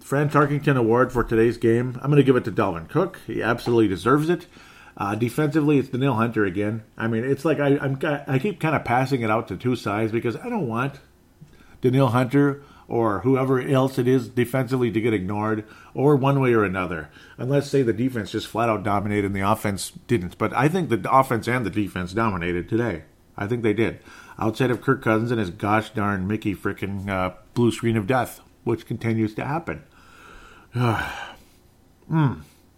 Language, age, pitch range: English, 40-59, 100-130 Hz